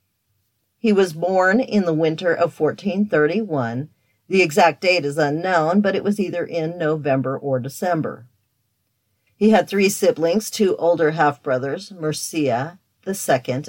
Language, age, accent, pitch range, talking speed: English, 50-69, American, 125-185 Hz, 130 wpm